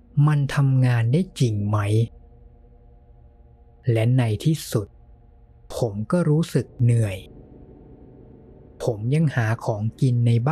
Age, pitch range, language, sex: 20-39, 80-135 Hz, Thai, male